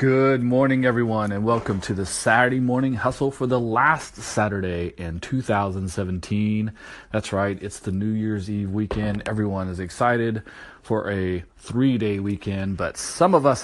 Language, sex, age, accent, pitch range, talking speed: English, male, 30-49, American, 95-120 Hz, 155 wpm